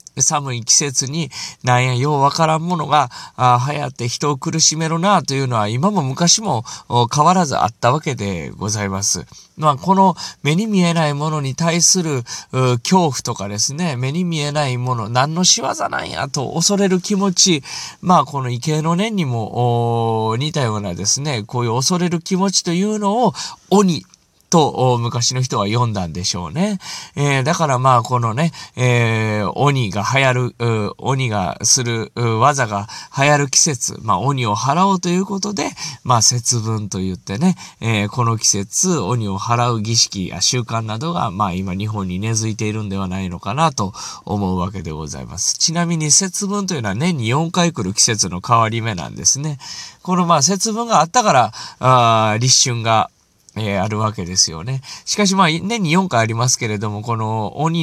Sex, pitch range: male, 105-160 Hz